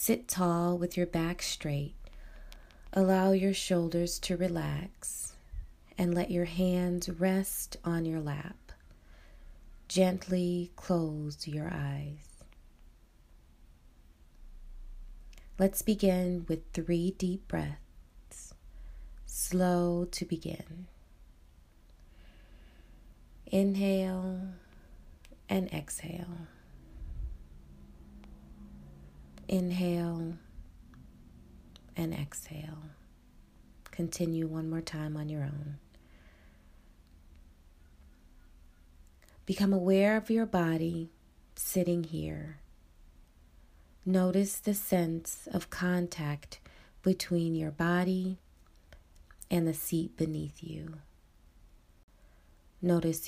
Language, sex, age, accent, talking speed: English, female, 20-39, American, 75 wpm